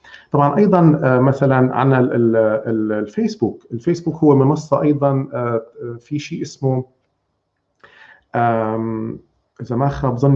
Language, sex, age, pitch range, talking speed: Arabic, male, 40-59, 115-145 Hz, 85 wpm